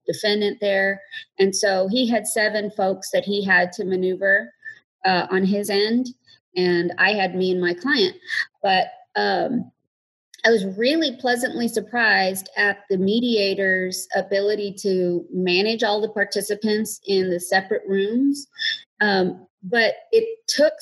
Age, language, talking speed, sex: 40-59, English, 140 wpm, female